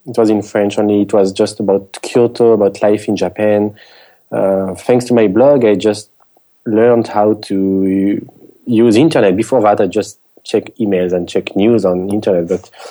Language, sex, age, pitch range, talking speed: English, male, 30-49, 100-120 Hz, 175 wpm